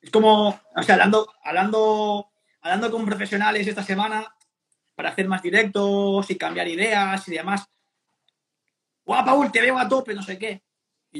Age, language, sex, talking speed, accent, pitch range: 30-49, Spanish, male, 160 wpm, Spanish, 185-235 Hz